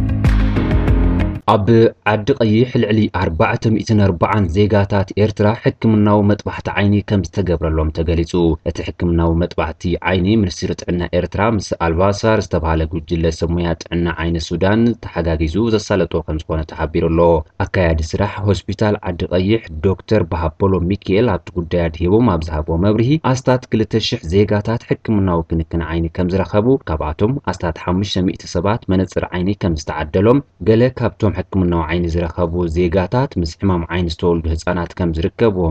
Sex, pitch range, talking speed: male, 85-110 Hz, 110 wpm